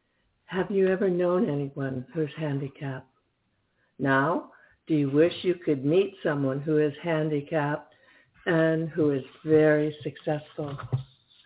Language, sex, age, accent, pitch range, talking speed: English, female, 60-79, American, 140-175 Hz, 120 wpm